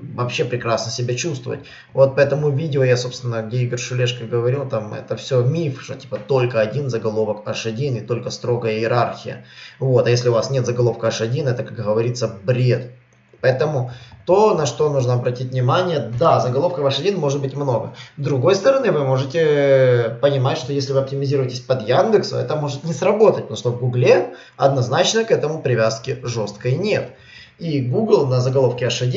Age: 20-39